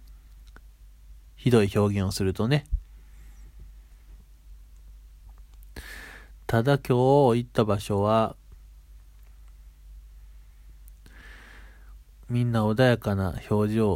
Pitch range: 75-110 Hz